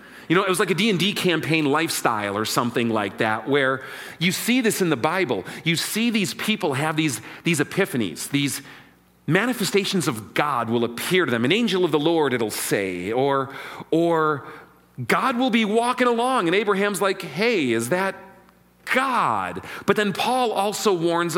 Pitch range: 130-185 Hz